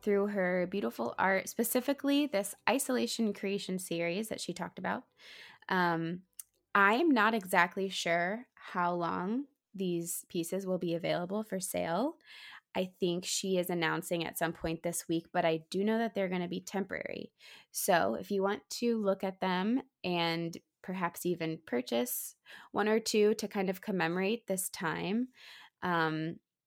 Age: 20-39